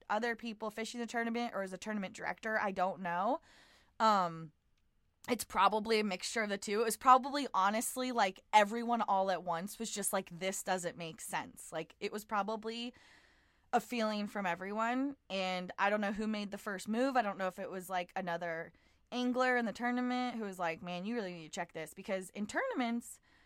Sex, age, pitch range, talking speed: female, 20-39, 180-230 Hz, 200 wpm